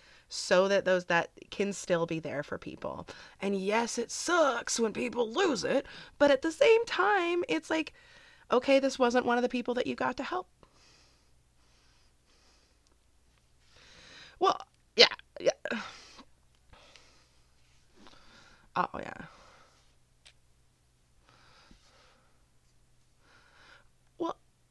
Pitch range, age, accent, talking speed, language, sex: 175-270 Hz, 30-49, American, 105 wpm, English, female